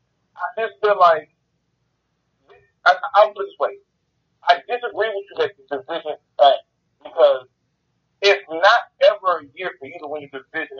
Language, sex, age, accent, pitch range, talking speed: English, male, 40-59, American, 150-220 Hz, 160 wpm